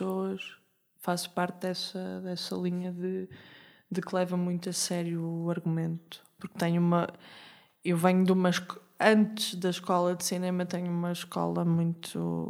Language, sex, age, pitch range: Portuguese, female, 20-39, 165-185 Hz